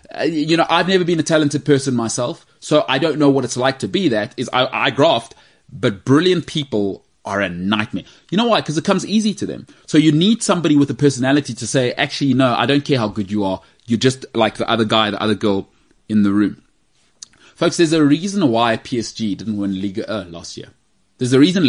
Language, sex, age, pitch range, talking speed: English, male, 30-49, 105-145 Hz, 230 wpm